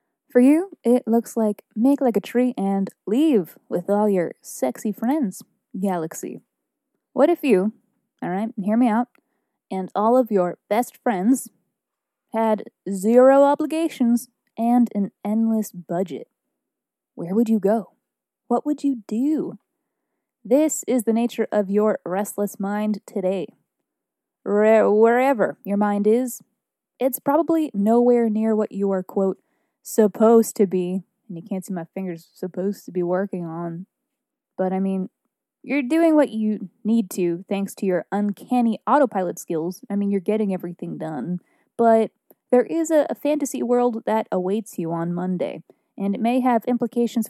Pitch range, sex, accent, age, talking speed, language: 200-260 Hz, female, American, 20-39, 150 wpm, English